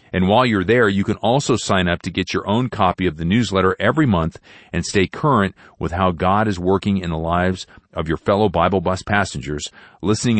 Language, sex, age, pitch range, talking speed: English, male, 40-59, 90-120 Hz, 215 wpm